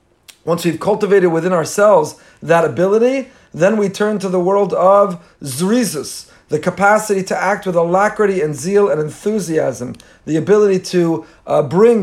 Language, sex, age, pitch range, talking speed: English, male, 40-59, 165-210 Hz, 150 wpm